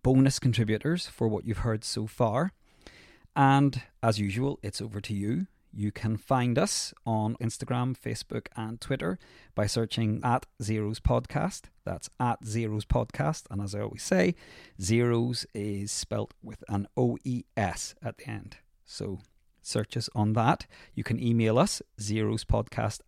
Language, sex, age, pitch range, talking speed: English, male, 30-49, 105-125 Hz, 150 wpm